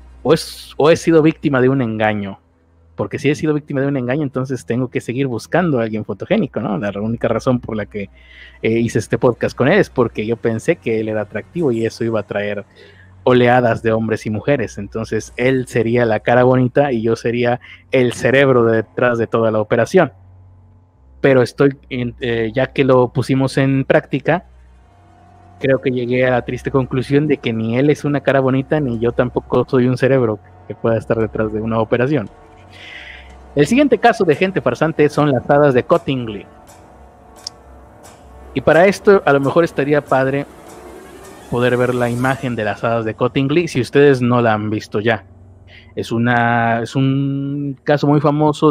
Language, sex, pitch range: Spanish, male, 110-135 Hz